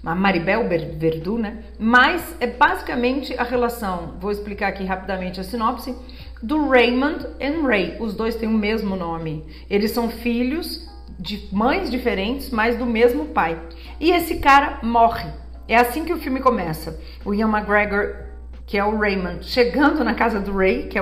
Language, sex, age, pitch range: Portuguese, female, 40-59, 185-245 Hz